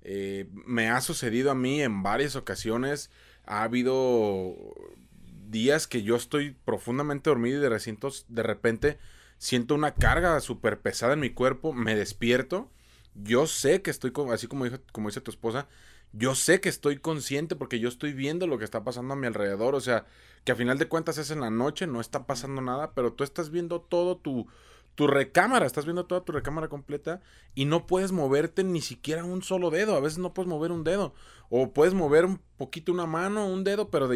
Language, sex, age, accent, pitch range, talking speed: Spanish, male, 30-49, Mexican, 120-155 Hz, 200 wpm